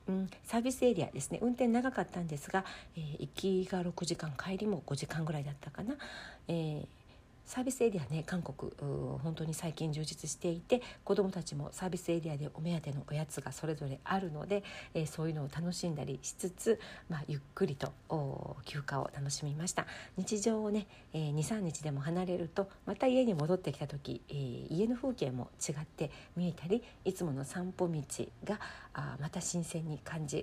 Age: 50-69